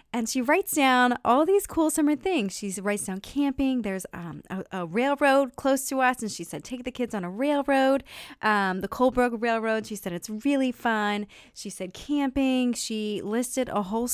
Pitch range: 190-265 Hz